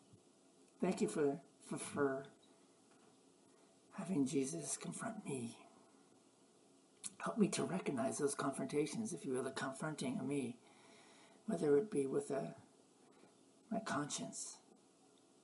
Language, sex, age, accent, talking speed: English, male, 60-79, American, 115 wpm